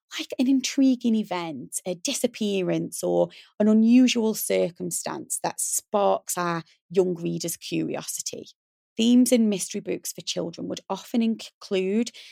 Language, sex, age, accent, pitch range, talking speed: English, female, 20-39, British, 190-255 Hz, 120 wpm